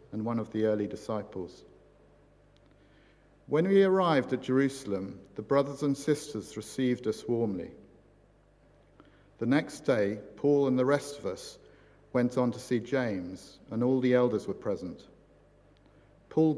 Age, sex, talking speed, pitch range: 50-69, male, 140 wpm, 120-155 Hz